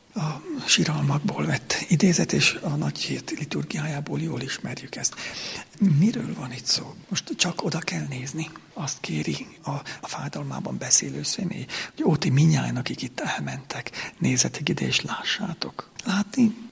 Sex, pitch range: male, 140-180 Hz